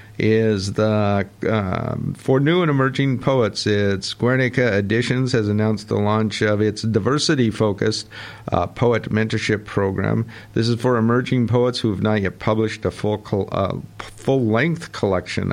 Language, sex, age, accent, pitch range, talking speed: English, male, 50-69, American, 105-120 Hz, 145 wpm